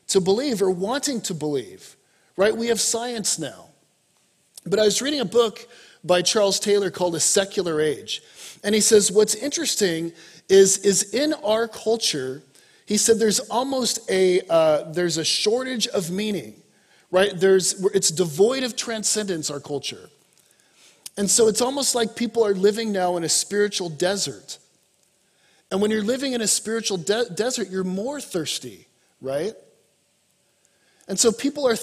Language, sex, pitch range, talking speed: English, male, 175-225 Hz, 155 wpm